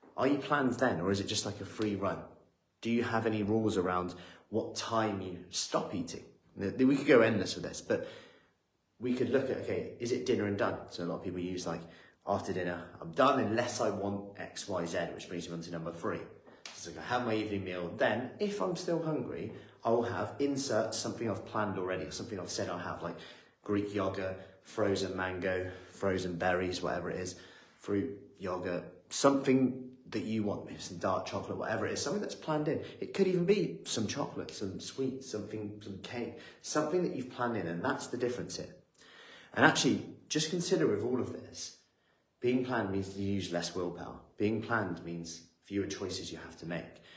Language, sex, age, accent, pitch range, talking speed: English, male, 30-49, British, 90-120 Hz, 205 wpm